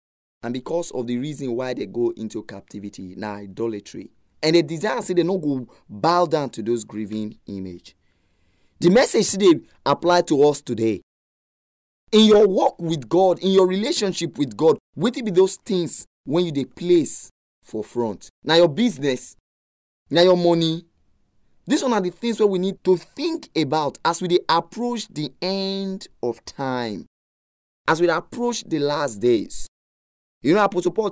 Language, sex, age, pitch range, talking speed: English, male, 30-49, 120-195 Hz, 170 wpm